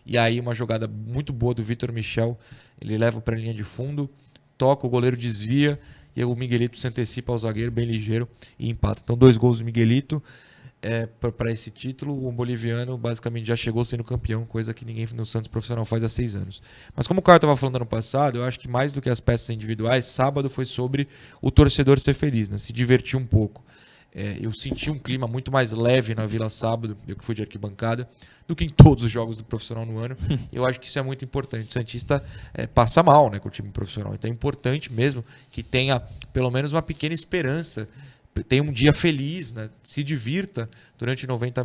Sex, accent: male, Brazilian